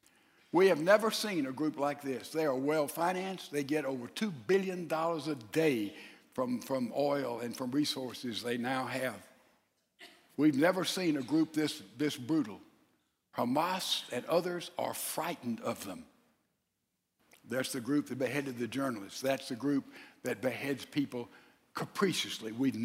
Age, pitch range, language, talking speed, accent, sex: 60-79, 135-180 Hz, English, 150 wpm, American, male